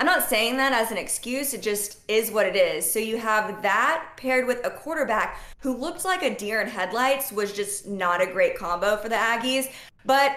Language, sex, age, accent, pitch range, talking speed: English, female, 20-39, American, 210-270 Hz, 220 wpm